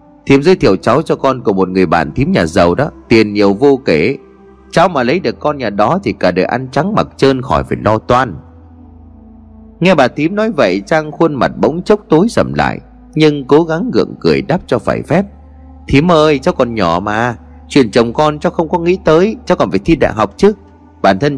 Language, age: Vietnamese, 30-49